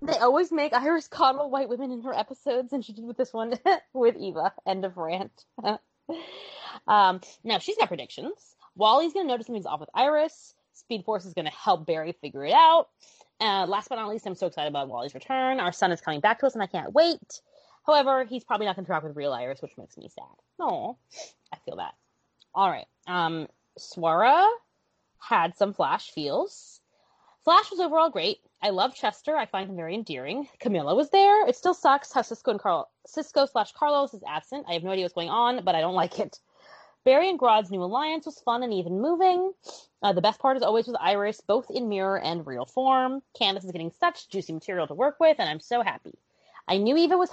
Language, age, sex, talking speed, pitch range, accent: English, 20-39, female, 215 wpm, 195-300 Hz, American